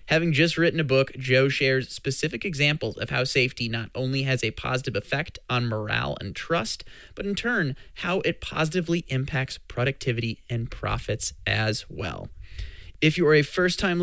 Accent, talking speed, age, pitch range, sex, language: American, 165 wpm, 20-39, 120-160 Hz, male, English